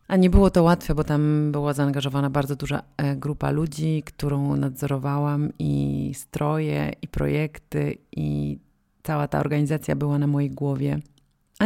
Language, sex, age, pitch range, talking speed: Polish, female, 30-49, 140-175 Hz, 145 wpm